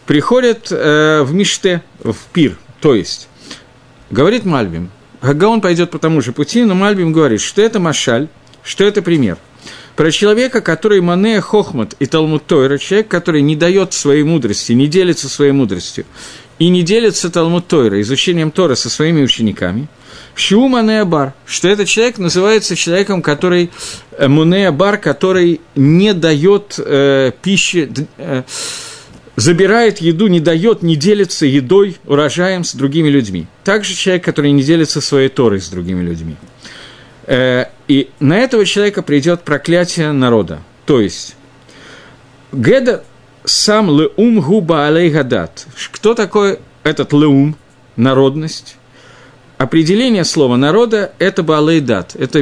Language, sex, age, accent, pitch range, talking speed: Russian, male, 50-69, native, 130-190 Hz, 130 wpm